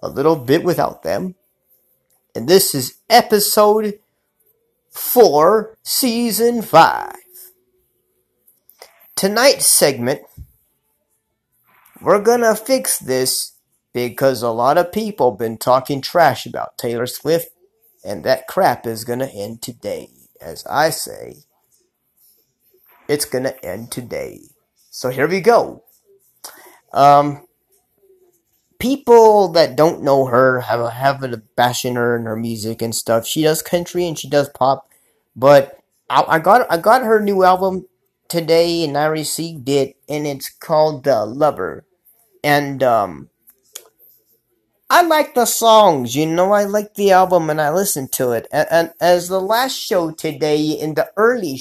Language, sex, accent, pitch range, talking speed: English, male, American, 135-220 Hz, 135 wpm